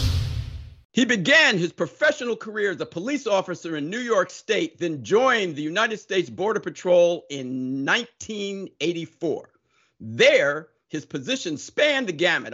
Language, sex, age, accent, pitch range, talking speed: English, male, 50-69, American, 155-230 Hz, 135 wpm